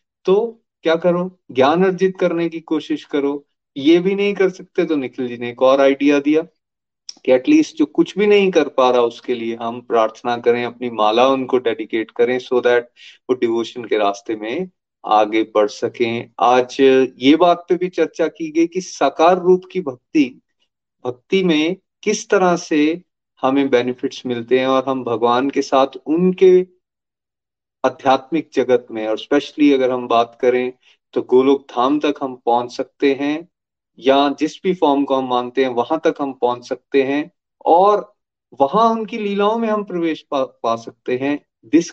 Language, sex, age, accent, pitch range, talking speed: Hindi, male, 30-49, native, 125-175 Hz, 175 wpm